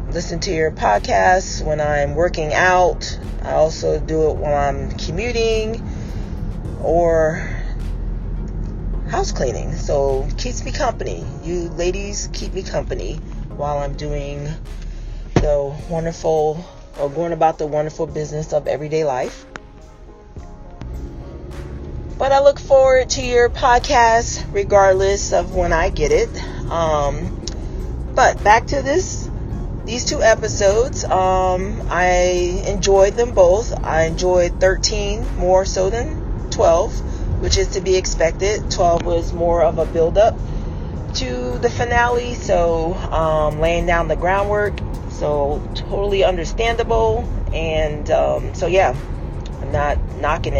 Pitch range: 135-190 Hz